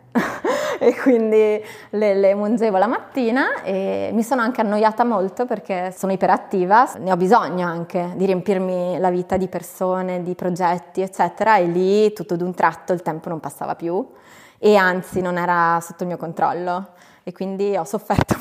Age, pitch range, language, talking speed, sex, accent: 20-39, 180-215 Hz, Italian, 170 wpm, female, native